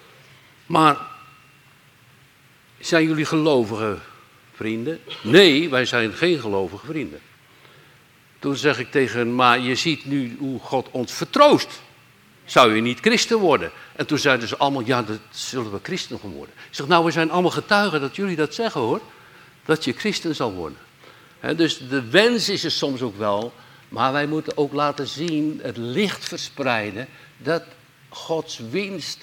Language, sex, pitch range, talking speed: Dutch, male, 120-160 Hz, 155 wpm